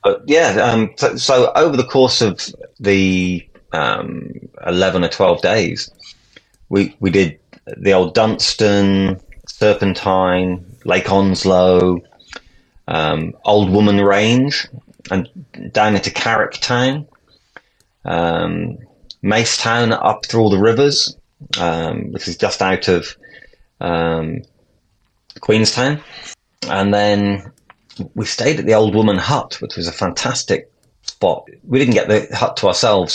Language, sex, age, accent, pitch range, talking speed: English, male, 30-49, British, 95-120 Hz, 125 wpm